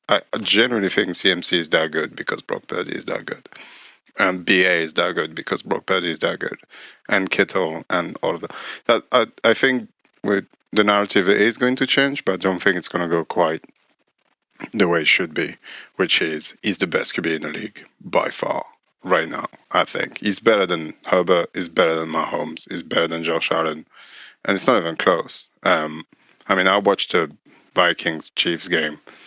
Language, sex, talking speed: English, male, 195 wpm